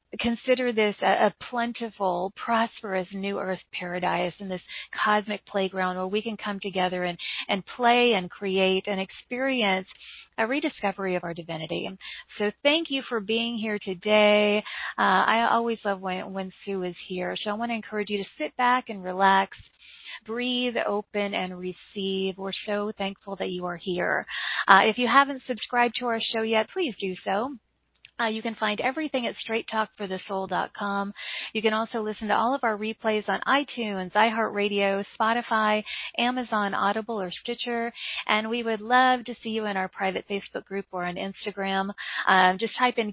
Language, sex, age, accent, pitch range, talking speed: English, female, 40-59, American, 195-235 Hz, 170 wpm